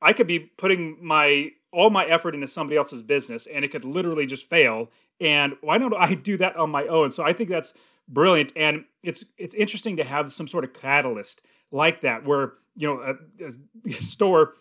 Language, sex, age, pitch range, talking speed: English, male, 30-49, 145-180 Hz, 205 wpm